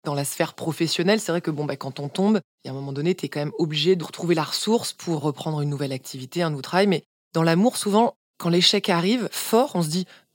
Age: 20-39